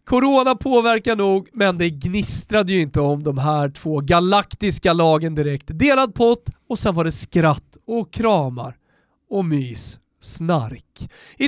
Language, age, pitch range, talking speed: Swedish, 30-49, 155-235 Hz, 145 wpm